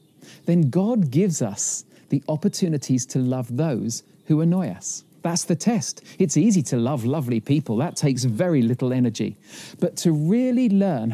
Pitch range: 140-190 Hz